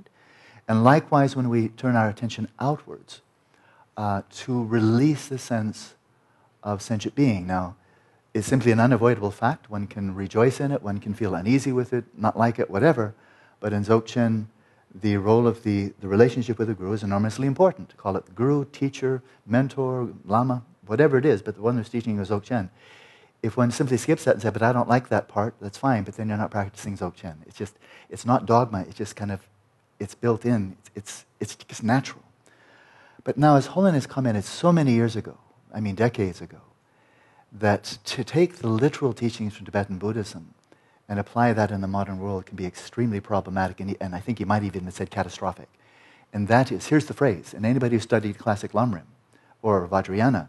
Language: English